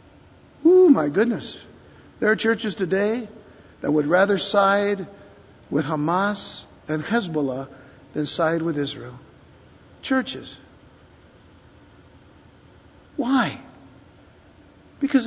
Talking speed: 85 wpm